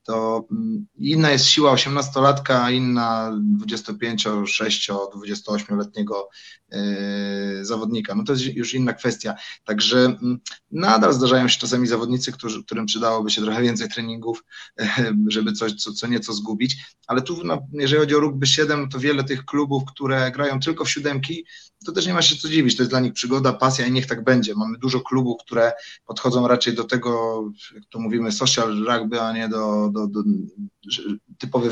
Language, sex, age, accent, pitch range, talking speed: Polish, male, 30-49, native, 110-140 Hz, 165 wpm